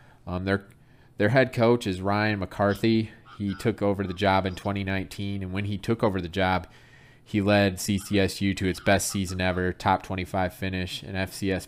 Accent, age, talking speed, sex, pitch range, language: American, 20-39, 190 wpm, male, 95-115 Hz, English